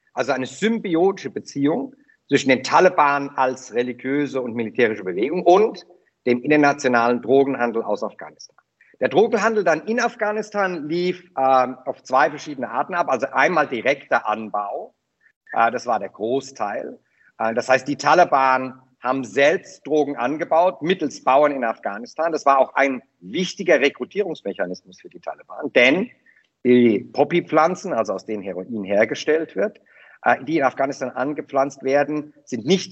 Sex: male